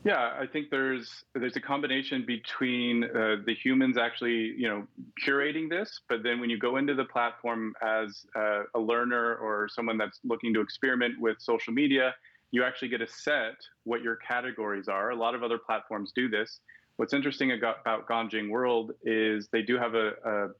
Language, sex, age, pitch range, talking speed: English, male, 30-49, 110-125 Hz, 185 wpm